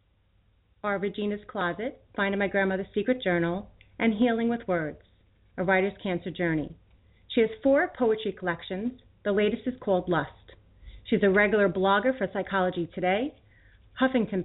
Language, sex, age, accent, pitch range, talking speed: English, female, 30-49, American, 170-215 Hz, 140 wpm